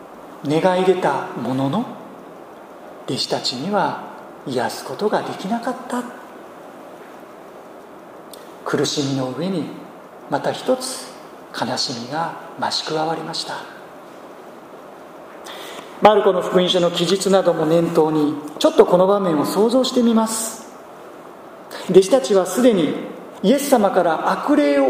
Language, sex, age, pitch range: Japanese, male, 40-59, 185-245 Hz